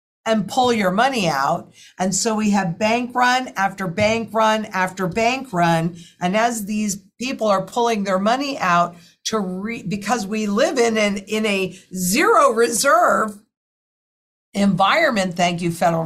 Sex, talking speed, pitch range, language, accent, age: female, 155 wpm, 185-235 Hz, English, American, 50-69